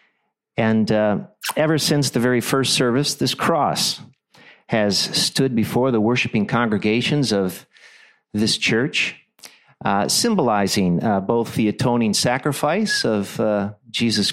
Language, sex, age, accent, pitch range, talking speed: English, male, 50-69, American, 105-145 Hz, 120 wpm